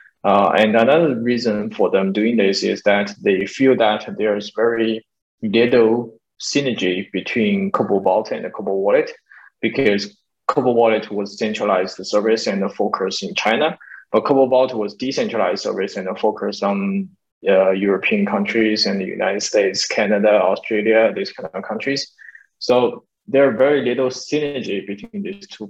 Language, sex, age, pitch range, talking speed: English, male, 20-39, 105-140 Hz, 155 wpm